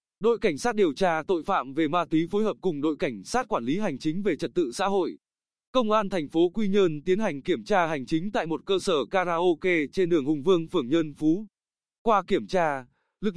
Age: 20-39